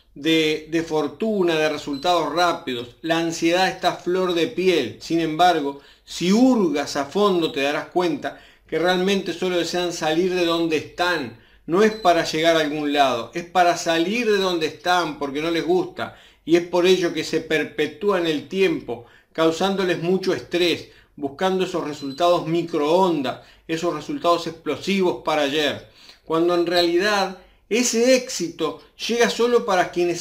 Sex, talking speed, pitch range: male, 155 wpm, 155-185 Hz